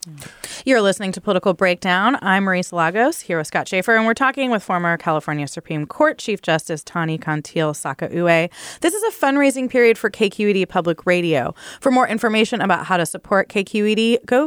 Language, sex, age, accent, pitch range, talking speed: English, female, 30-49, American, 180-245 Hz, 180 wpm